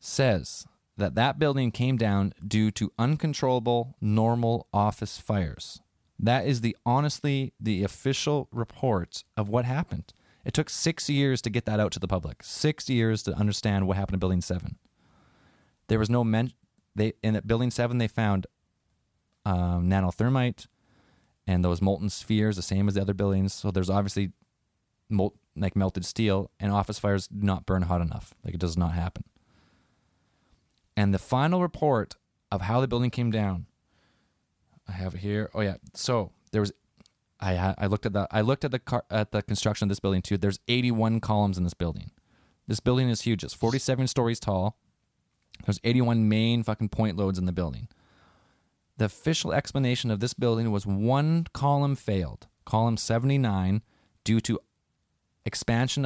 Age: 20-39